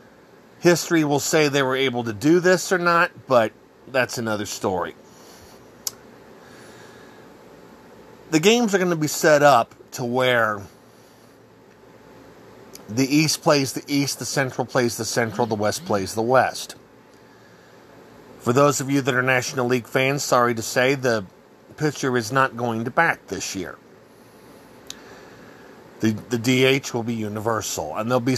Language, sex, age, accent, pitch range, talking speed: English, male, 40-59, American, 115-150 Hz, 150 wpm